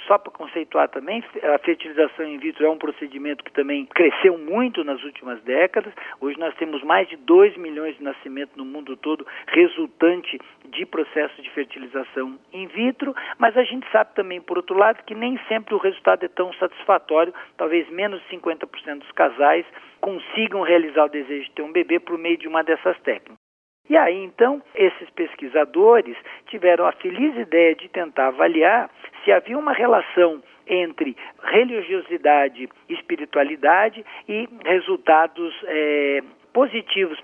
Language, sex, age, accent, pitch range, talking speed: Portuguese, male, 50-69, Brazilian, 150-225 Hz, 155 wpm